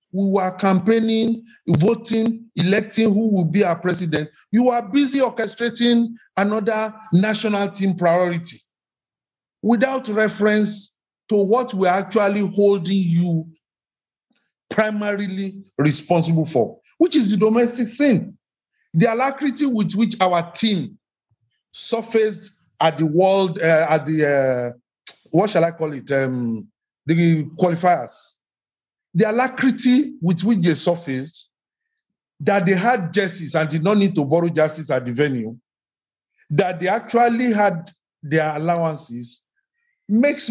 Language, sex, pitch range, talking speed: English, male, 165-225 Hz, 125 wpm